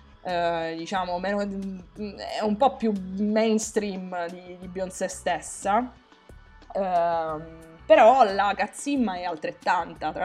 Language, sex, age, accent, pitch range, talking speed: Italian, female, 20-39, native, 170-220 Hz, 105 wpm